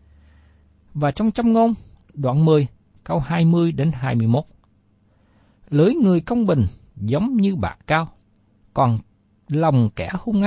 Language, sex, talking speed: Vietnamese, male, 115 wpm